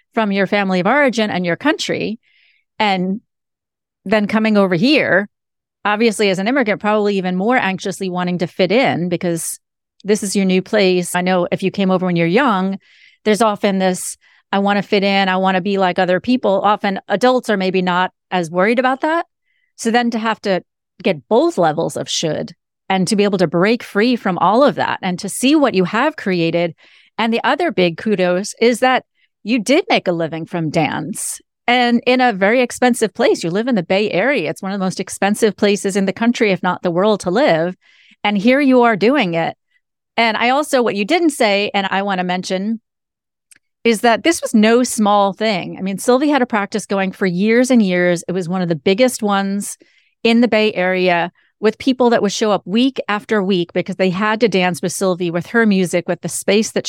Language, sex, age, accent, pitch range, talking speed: English, female, 40-59, American, 185-235 Hz, 215 wpm